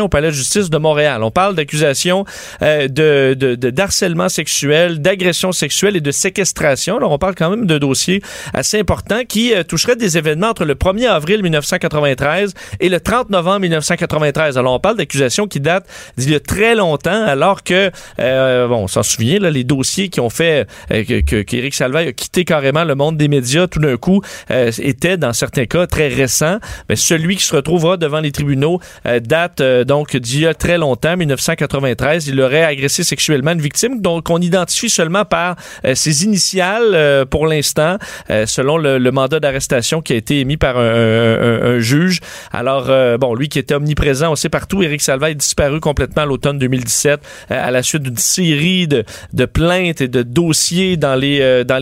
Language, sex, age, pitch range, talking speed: French, male, 40-59, 135-175 Hz, 200 wpm